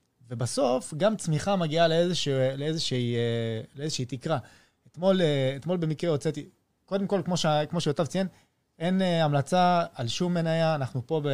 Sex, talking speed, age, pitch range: male, 130 wpm, 20-39, 130-170 Hz